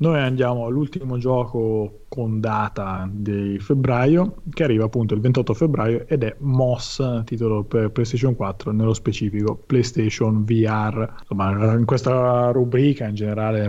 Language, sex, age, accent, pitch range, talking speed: Italian, male, 30-49, native, 105-125 Hz, 135 wpm